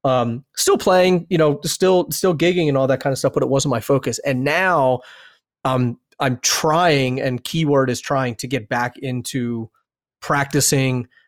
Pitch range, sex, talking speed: 120-145 Hz, male, 175 wpm